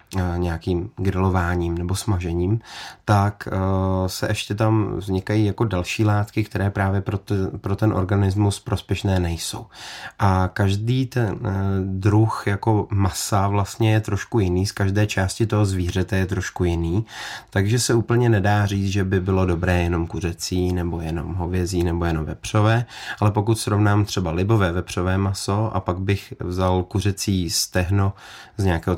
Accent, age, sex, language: native, 20-39, male, Czech